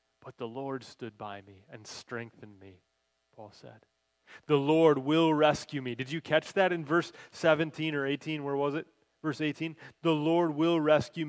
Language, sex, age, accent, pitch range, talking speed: English, male, 30-49, American, 125-175 Hz, 180 wpm